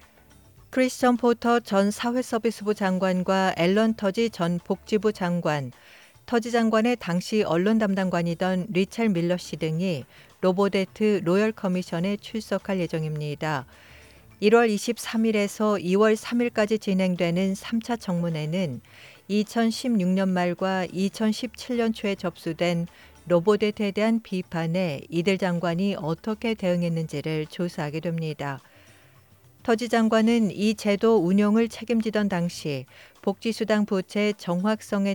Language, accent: Korean, native